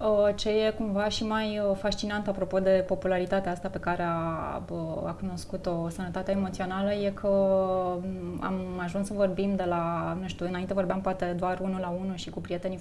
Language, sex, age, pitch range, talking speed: Romanian, female, 20-39, 185-215 Hz, 175 wpm